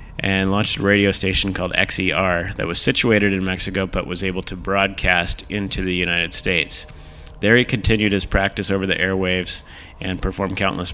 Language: English